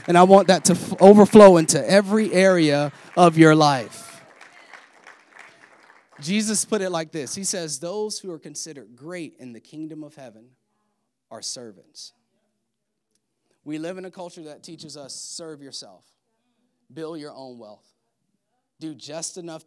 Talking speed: 145 wpm